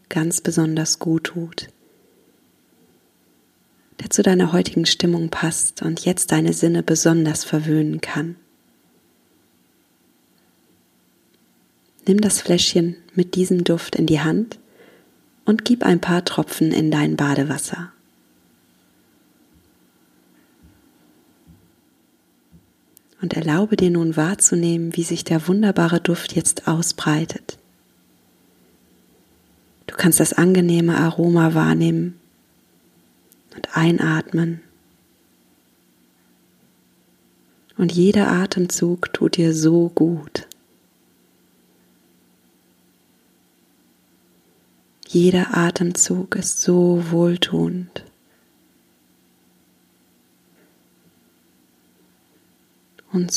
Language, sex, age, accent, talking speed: German, female, 30-49, German, 75 wpm